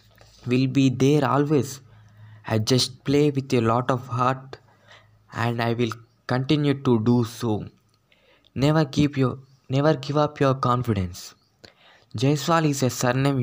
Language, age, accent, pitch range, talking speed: Telugu, 20-39, native, 115-140 Hz, 140 wpm